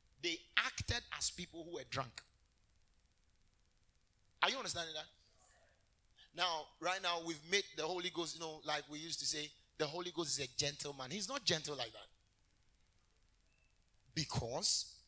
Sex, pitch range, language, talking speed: male, 135-215 Hz, English, 150 wpm